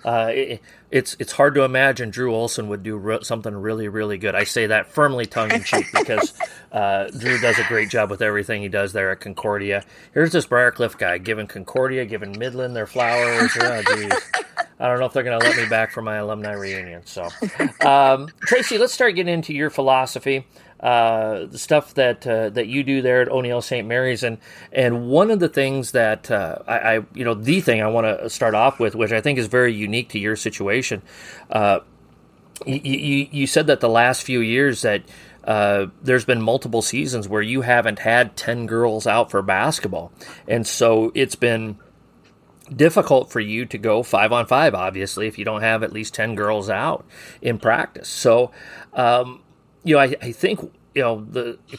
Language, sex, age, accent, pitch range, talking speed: English, male, 40-59, American, 110-135 Hz, 195 wpm